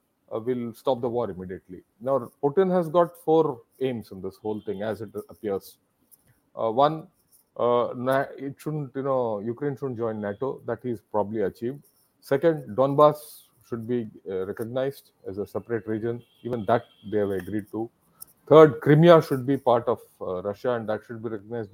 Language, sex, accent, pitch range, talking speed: English, male, Indian, 115-155 Hz, 175 wpm